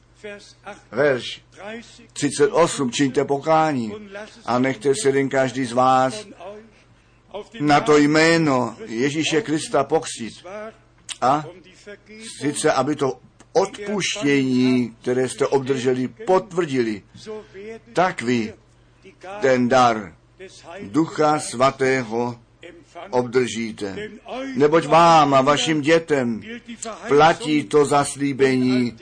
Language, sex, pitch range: Czech, male, 130-180 Hz